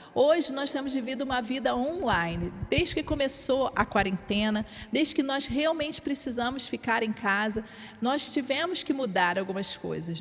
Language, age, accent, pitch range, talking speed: Portuguese, 40-59, Brazilian, 225-290 Hz, 155 wpm